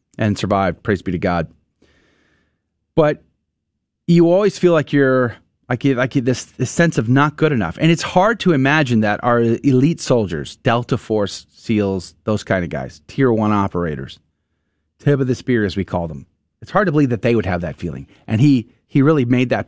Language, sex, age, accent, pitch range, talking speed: English, male, 30-49, American, 95-145 Hz, 200 wpm